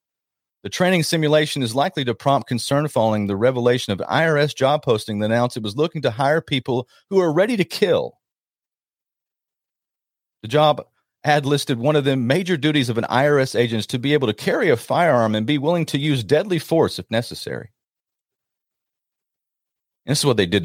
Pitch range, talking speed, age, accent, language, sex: 110-160 Hz, 185 wpm, 40-59, American, English, male